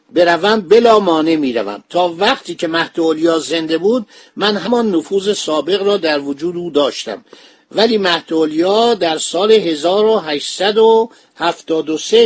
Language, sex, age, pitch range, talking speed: Persian, male, 50-69, 155-210 Hz, 120 wpm